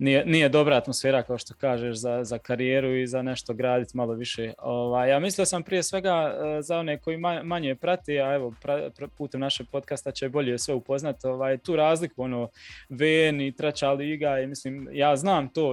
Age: 20-39